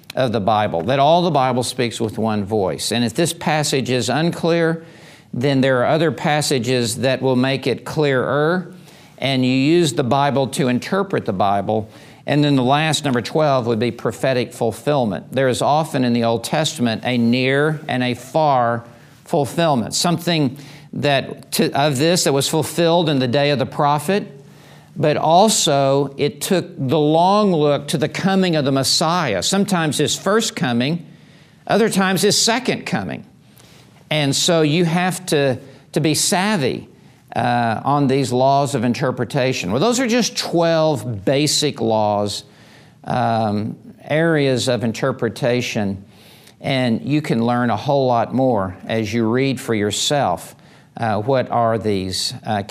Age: 50-69